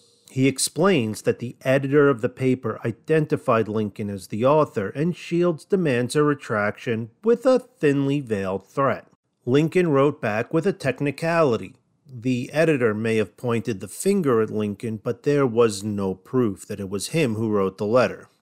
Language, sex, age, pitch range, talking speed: English, male, 40-59, 110-150 Hz, 165 wpm